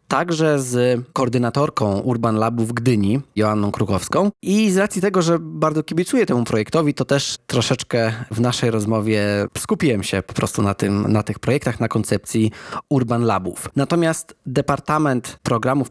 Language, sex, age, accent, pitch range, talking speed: Polish, male, 20-39, native, 110-140 Hz, 145 wpm